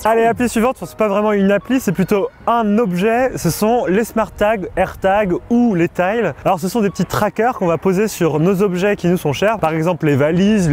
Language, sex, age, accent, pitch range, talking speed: French, male, 20-39, French, 175-220 Hz, 235 wpm